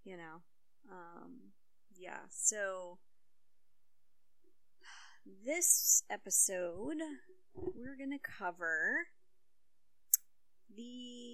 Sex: female